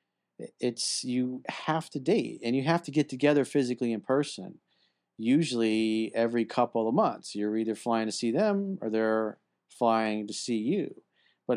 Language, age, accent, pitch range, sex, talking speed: English, 40-59, American, 105-125 Hz, male, 165 wpm